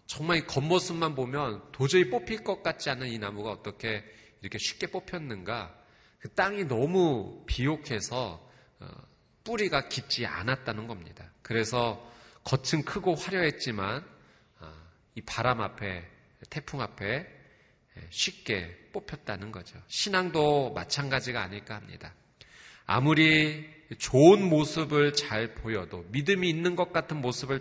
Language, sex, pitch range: Korean, male, 110-160 Hz